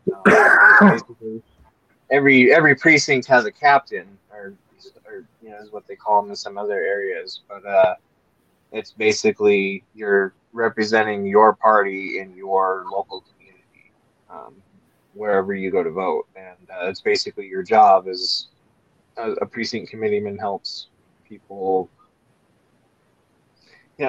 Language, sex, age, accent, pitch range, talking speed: English, male, 20-39, American, 105-140 Hz, 130 wpm